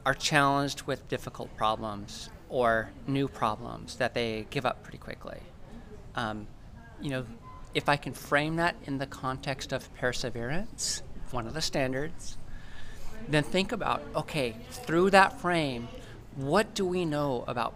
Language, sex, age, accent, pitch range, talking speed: English, male, 40-59, American, 125-165 Hz, 145 wpm